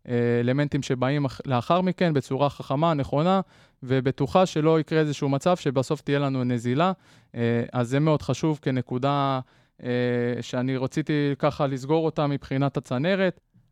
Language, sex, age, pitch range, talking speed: Hebrew, male, 20-39, 130-155 Hz, 120 wpm